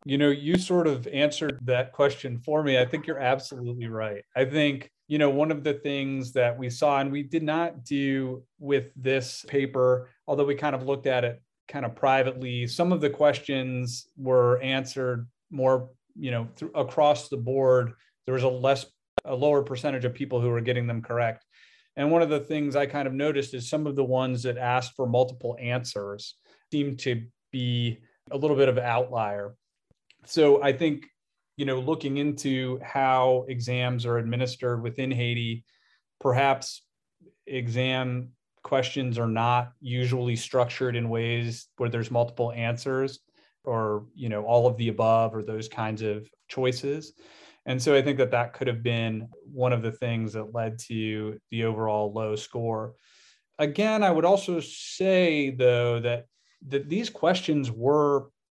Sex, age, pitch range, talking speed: male, 40-59, 120-140 Hz, 170 wpm